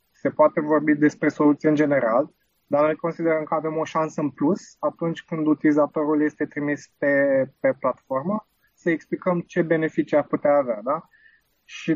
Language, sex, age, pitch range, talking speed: Romanian, male, 20-39, 135-165 Hz, 165 wpm